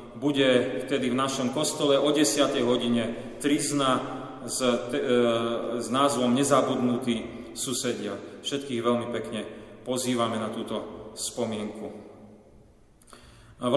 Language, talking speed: Slovak, 100 wpm